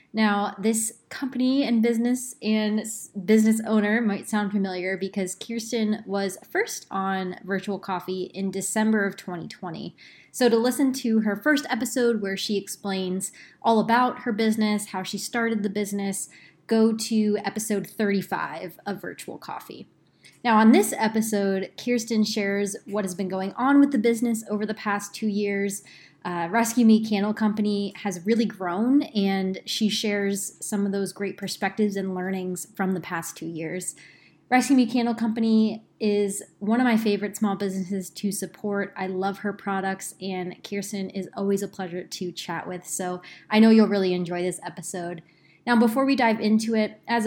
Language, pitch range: English, 195-225 Hz